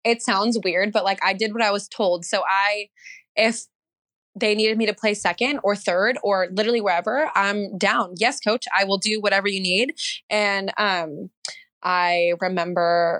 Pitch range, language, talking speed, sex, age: 185-220 Hz, English, 175 wpm, female, 20-39